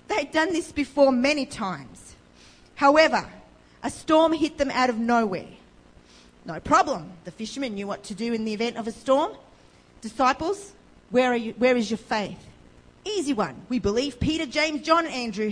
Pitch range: 190-285 Hz